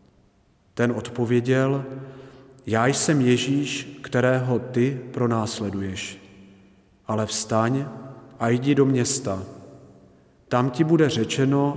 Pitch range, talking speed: 105-135 Hz, 90 wpm